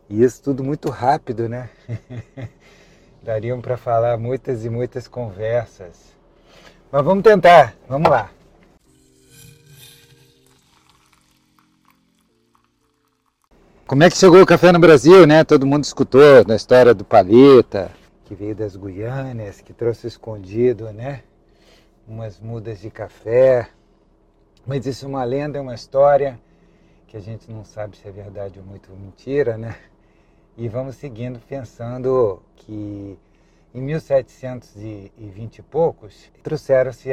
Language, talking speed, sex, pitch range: Portuguese, 125 wpm, male, 105-135 Hz